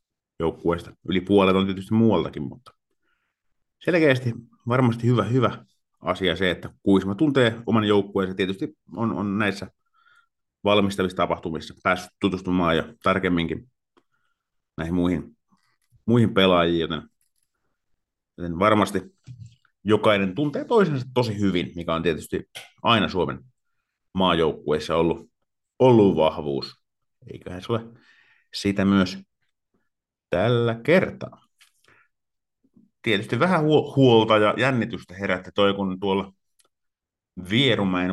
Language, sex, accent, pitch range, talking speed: Finnish, male, native, 90-115 Hz, 105 wpm